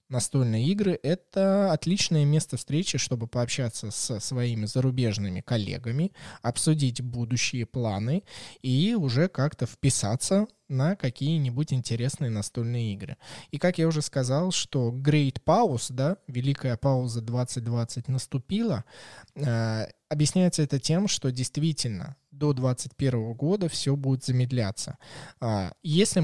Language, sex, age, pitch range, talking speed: Russian, male, 20-39, 120-150 Hz, 110 wpm